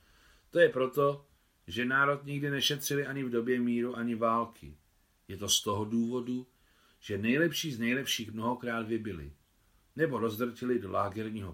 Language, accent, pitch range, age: Czech, native, 90-125 Hz, 40-59